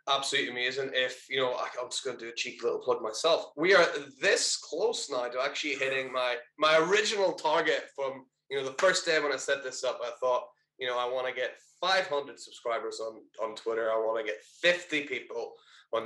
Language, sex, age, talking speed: English, male, 20-39, 215 wpm